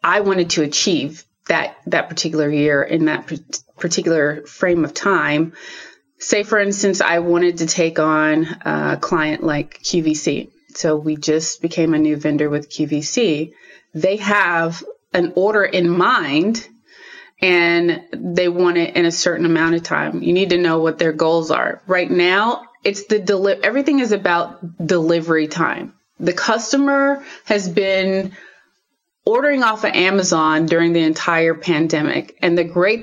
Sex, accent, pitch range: female, American, 160-195 Hz